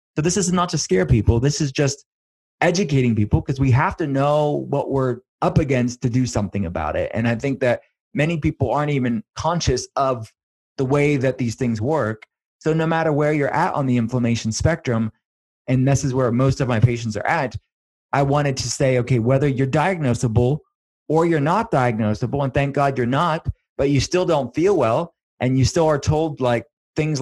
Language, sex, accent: English, male, American